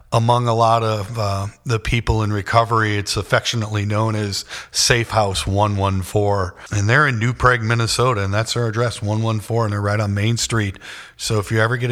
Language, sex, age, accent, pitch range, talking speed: English, male, 40-59, American, 100-120 Hz, 190 wpm